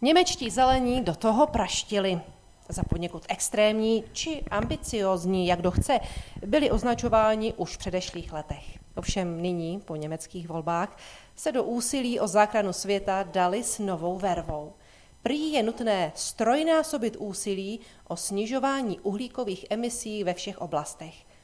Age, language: 40-59, Czech